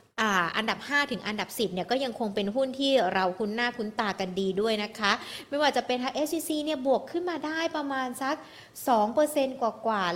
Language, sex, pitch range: Thai, female, 195-260 Hz